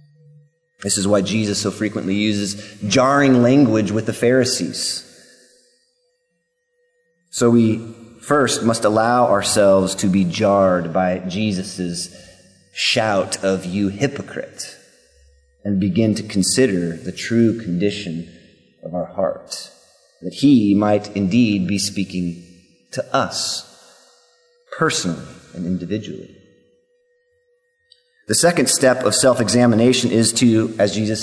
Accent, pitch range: American, 100-135 Hz